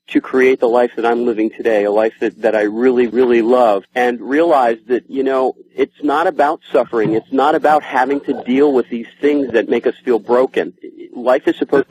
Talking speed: 210 wpm